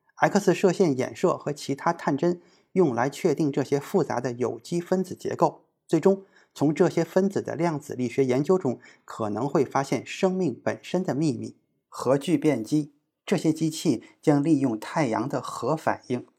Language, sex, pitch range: Chinese, male, 135-180 Hz